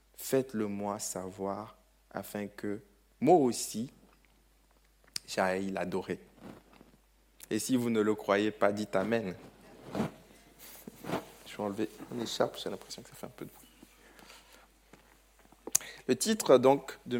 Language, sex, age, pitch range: French, male, 20-39, 105-130 Hz